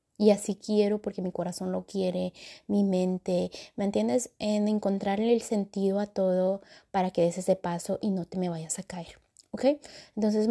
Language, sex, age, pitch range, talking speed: Spanish, female, 20-39, 180-210 Hz, 185 wpm